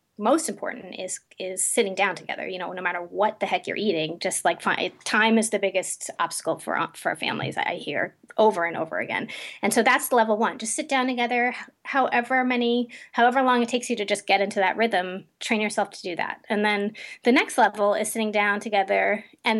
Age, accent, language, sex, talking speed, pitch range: 30-49, American, English, female, 210 wpm, 195-245 Hz